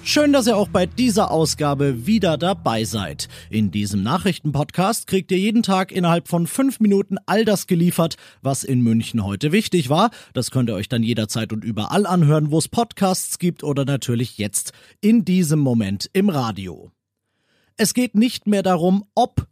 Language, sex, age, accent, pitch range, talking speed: German, male, 40-59, German, 135-195 Hz, 175 wpm